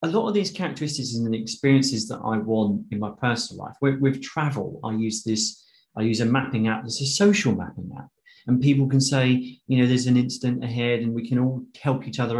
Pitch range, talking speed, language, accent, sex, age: 115-145 Hz, 225 wpm, English, British, male, 30-49